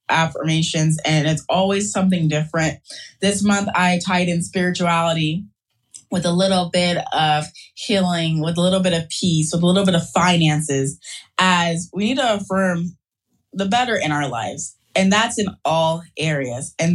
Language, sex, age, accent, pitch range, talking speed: English, female, 20-39, American, 165-250 Hz, 165 wpm